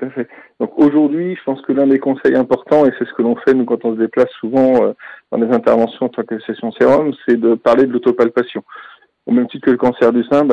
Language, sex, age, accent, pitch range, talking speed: French, male, 40-59, French, 120-135 Hz, 245 wpm